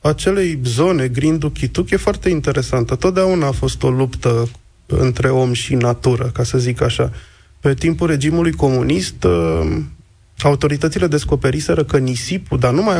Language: Romanian